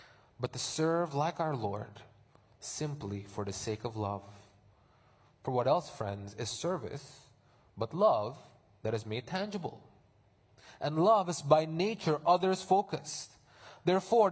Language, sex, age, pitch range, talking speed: English, male, 20-39, 130-190 Hz, 135 wpm